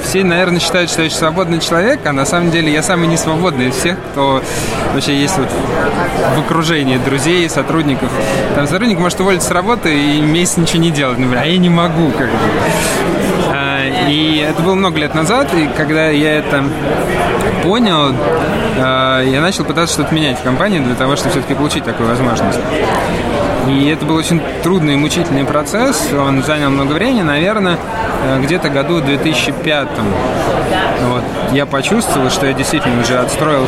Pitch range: 135-170 Hz